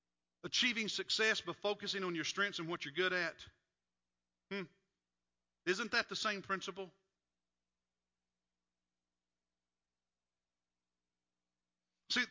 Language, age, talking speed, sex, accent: English, 50-69, 95 wpm, male, American